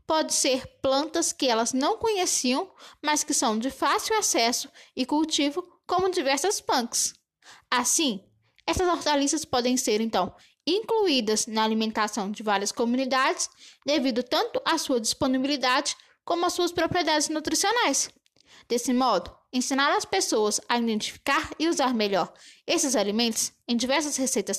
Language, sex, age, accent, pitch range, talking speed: Portuguese, female, 10-29, Brazilian, 235-335 Hz, 135 wpm